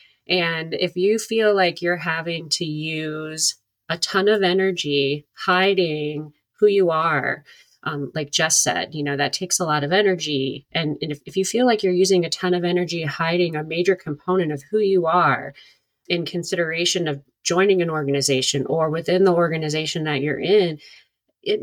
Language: English